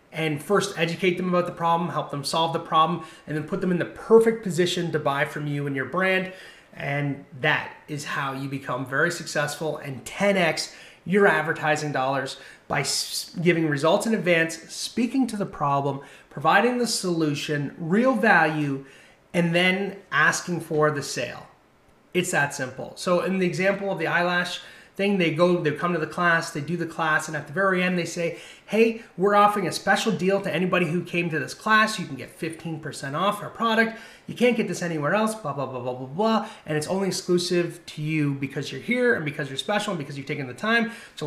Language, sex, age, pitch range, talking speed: English, male, 30-49, 150-195 Hz, 205 wpm